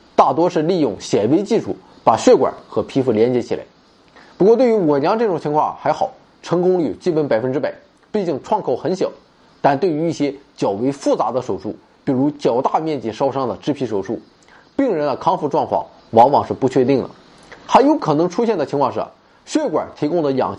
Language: Chinese